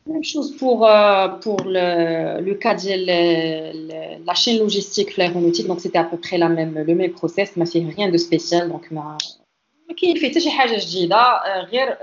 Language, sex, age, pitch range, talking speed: Arabic, female, 30-49, 180-240 Hz, 160 wpm